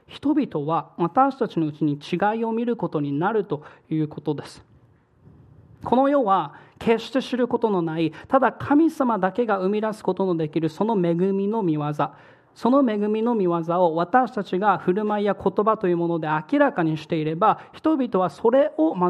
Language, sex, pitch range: Japanese, male, 165-215 Hz